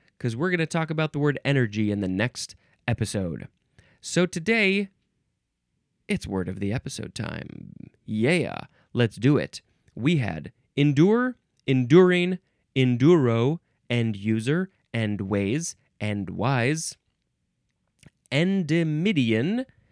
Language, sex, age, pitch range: English, male, 20-39, 110-160 Hz